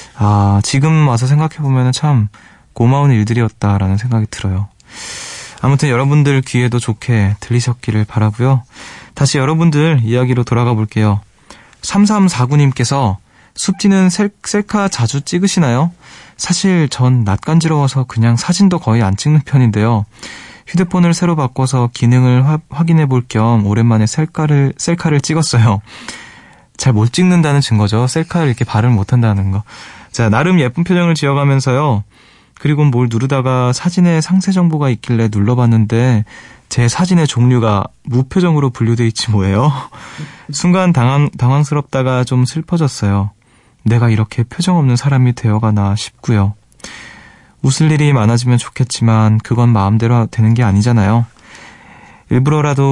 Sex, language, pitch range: male, Korean, 115-150 Hz